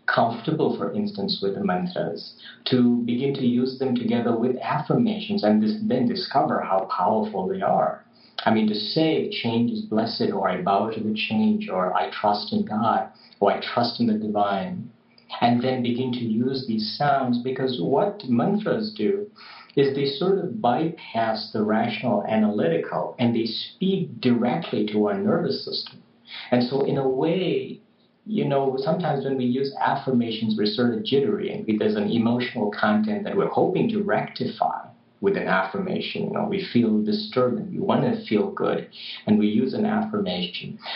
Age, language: 50-69, English